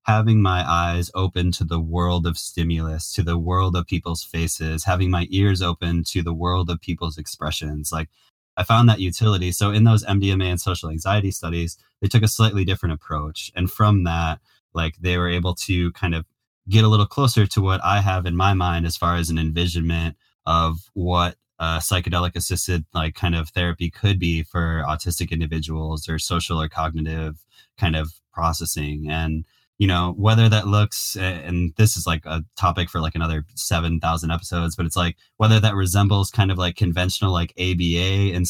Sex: male